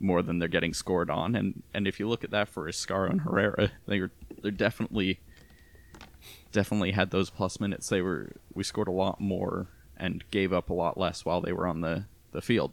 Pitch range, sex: 85-100 Hz, male